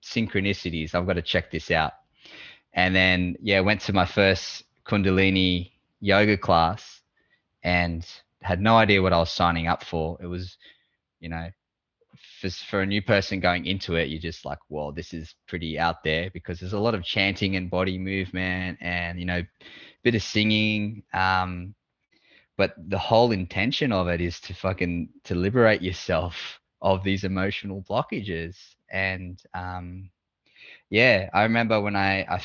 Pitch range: 90-100 Hz